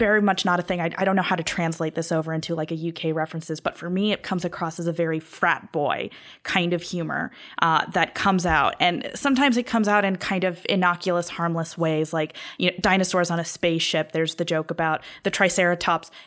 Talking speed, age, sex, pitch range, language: 220 wpm, 20-39, female, 170-200 Hz, English